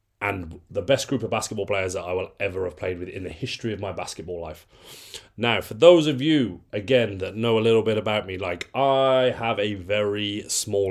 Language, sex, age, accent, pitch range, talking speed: English, male, 30-49, British, 95-115 Hz, 220 wpm